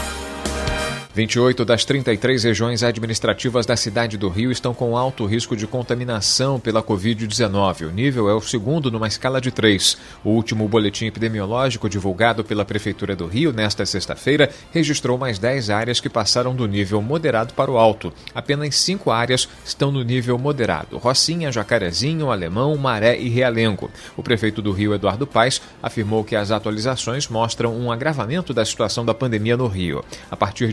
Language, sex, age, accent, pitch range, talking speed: Portuguese, male, 40-59, Brazilian, 105-130 Hz, 160 wpm